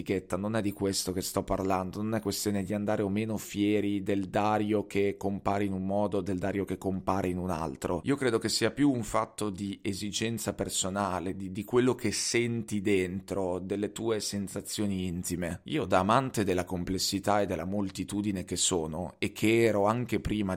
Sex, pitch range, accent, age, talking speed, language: male, 95-110 Hz, native, 30-49, 190 wpm, Italian